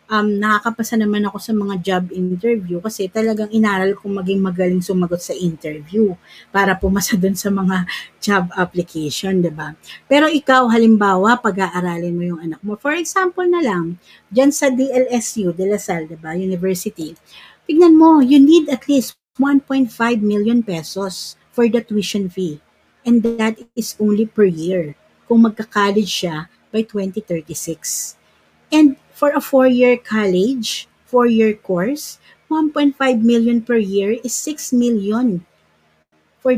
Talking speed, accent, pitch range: 140 wpm, native, 180-240 Hz